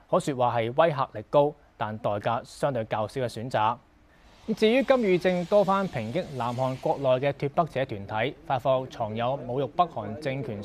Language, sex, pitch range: Chinese, male, 115-165 Hz